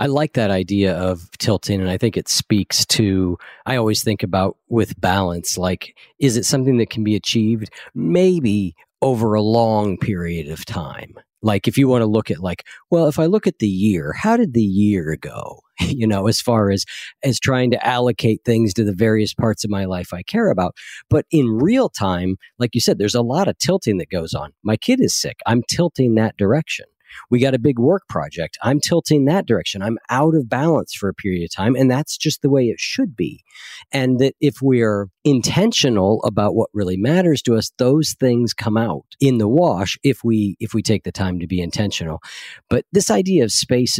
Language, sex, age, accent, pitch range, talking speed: English, male, 40-59, American, 95-130 Hz, 215 wpm